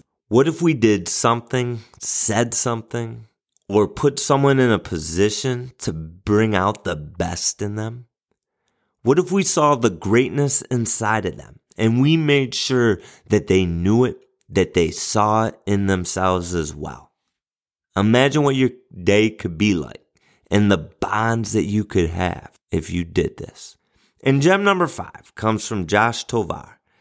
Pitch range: 100-125 Hz